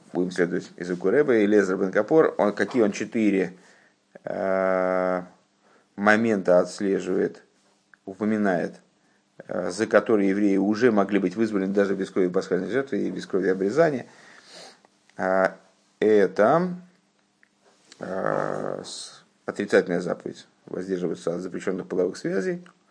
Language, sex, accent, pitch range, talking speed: Russian, male, native, 95-105 Hz, 105 wpm